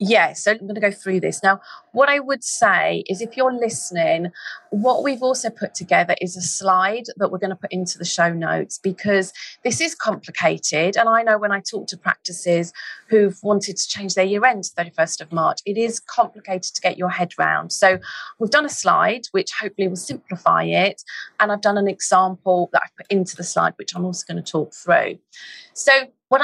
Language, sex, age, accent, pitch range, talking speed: English, female, 30-49, British, 180-225 Hz, 220 wpm